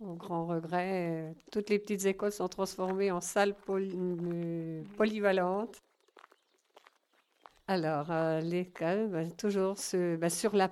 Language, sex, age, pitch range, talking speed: French, female, 50-69, 175-200 Hz, 125 wpm